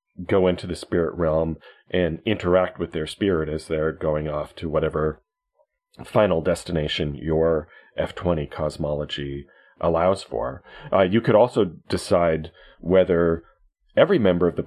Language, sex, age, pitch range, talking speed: English, male, 40-59, 80-95 Hz, 135 wpm